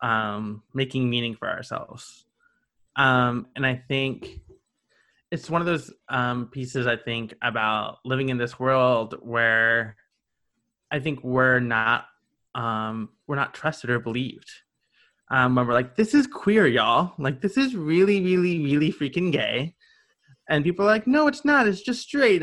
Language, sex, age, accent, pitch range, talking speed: English, male, 20-39, American, 120-170 Hz, 160 wpm